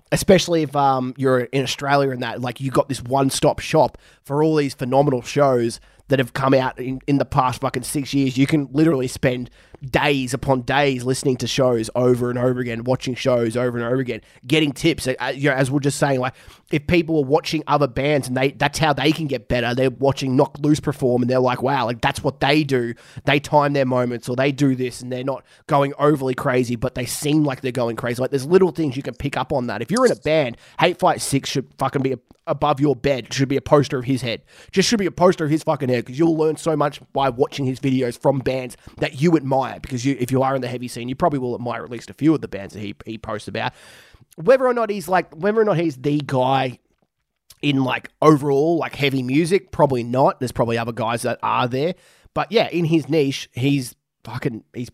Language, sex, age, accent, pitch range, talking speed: English, male, 20-39, Australian, 125-150 Hz, 245 wpm